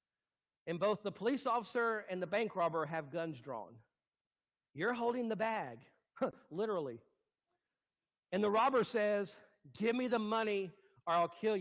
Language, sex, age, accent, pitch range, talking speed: English, male, 50-69, American, 195-235 Hz, 145 wpm